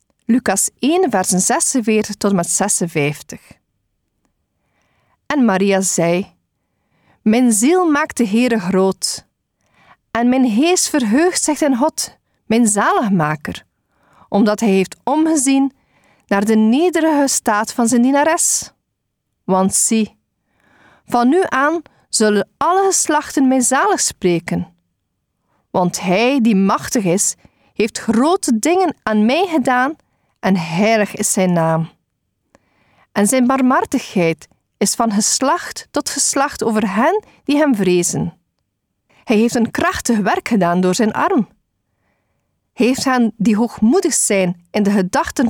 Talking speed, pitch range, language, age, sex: 125 wpm, 190-275 Hz, Dutch, 40-59, female